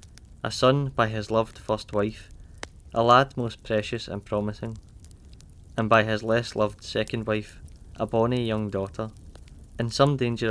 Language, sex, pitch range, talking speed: English, male, 100-115 Hz, 155 wpm